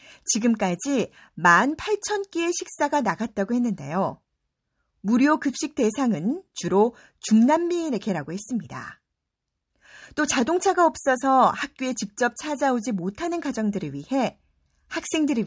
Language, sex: Korean, female